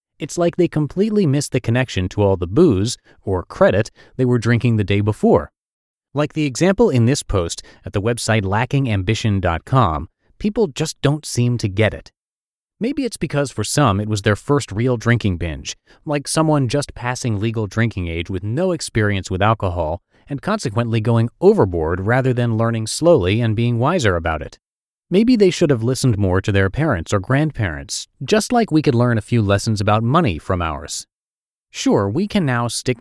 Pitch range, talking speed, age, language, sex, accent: 100-145 Hz, 185 wpm, 30-49, English, male, American